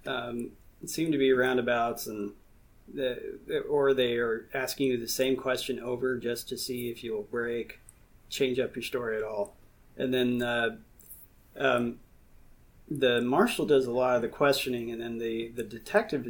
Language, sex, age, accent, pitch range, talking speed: English, male, 30-49, American, 120-135 Hz, 165 wpm